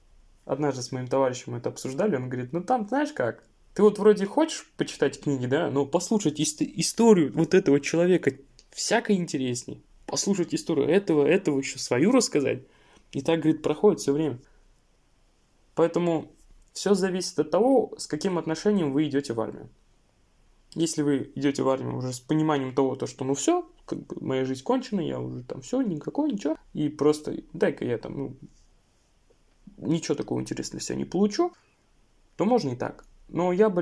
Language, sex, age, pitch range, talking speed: Russian, male, 20-39, 135-175 Hz, 170 wpm